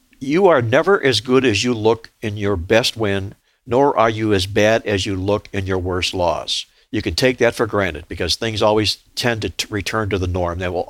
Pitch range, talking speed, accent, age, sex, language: 100-125 Hz, 225 wpm, American, 60-79, male, English